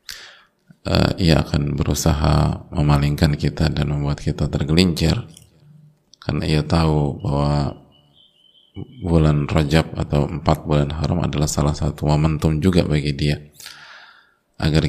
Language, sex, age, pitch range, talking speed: Indonesian, male, 20-39, 75-85 Hz, 115 wpm